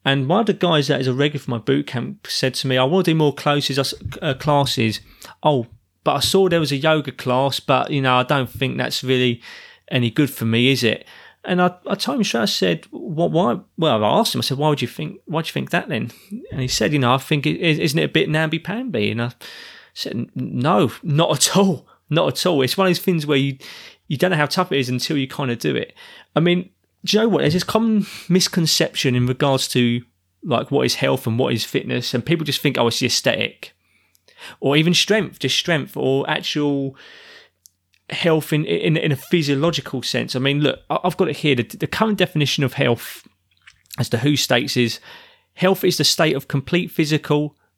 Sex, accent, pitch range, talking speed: male, British, 130-170 Hz, 225 wpm